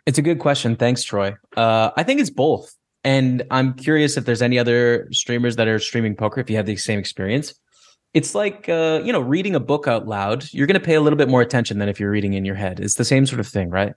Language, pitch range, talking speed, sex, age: English, 110-140 Hz, 265 wpm, male, 20-39